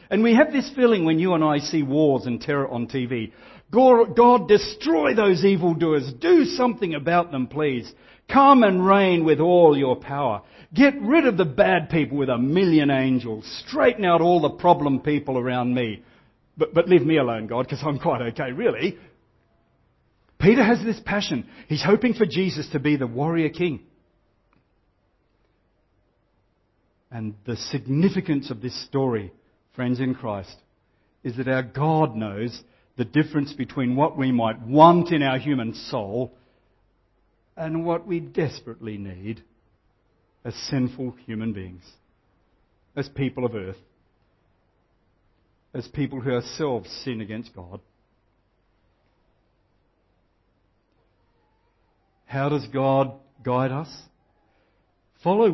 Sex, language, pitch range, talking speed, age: male, English, 110-160 Hz, 135 wpm, 50-69